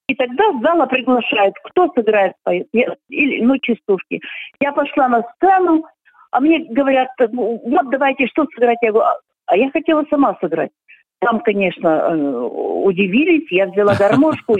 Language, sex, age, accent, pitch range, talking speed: Russian, female, 50-69, native, 205-275 Hz, 130 wpm